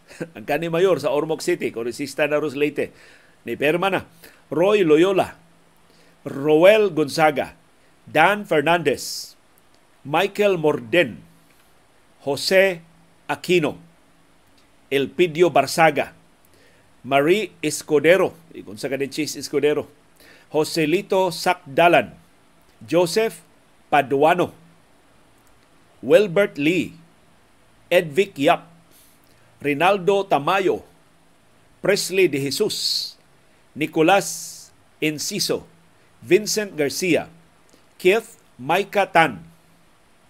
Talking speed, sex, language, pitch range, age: 70 wpm, male, Filipino, 145-190 Hz, 50-69